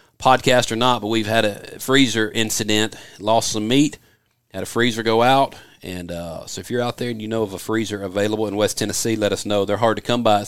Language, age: English, 40-59